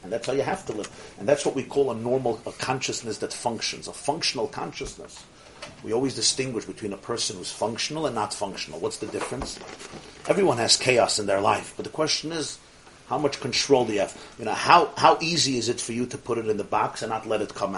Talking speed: 230 wpm